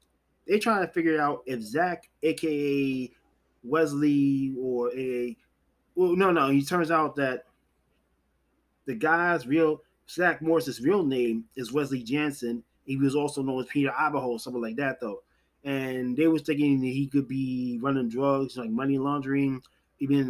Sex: male